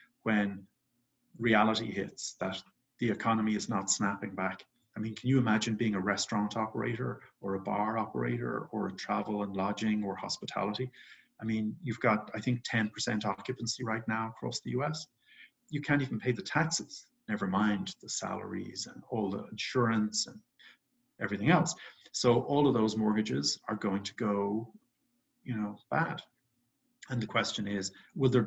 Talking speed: 165 wpm